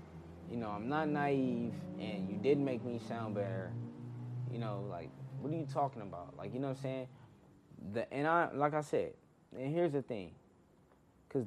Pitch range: 110-150 Hz